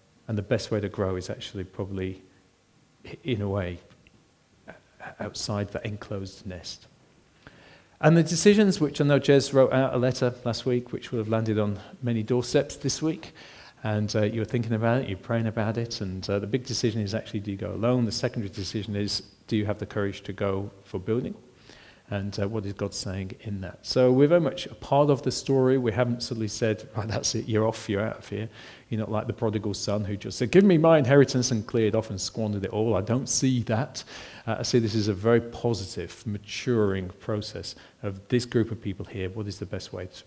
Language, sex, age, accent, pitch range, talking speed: English, male, 40-59, British, 105-125 Hz, 220 wpm